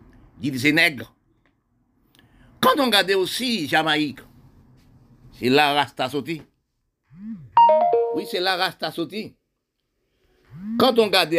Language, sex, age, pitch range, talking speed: French, male, 60-79, 135-175 Hz, 100 wpm